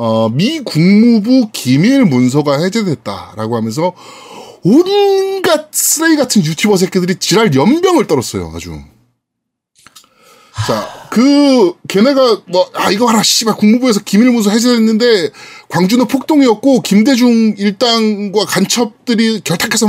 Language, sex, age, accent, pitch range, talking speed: English, male, 20-39, Korean, 185-275 Hz, 100 wpm